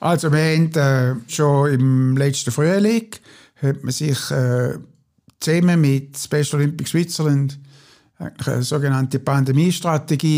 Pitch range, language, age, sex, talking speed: 135-160 Hz, German, 60-79, male, 115 wpm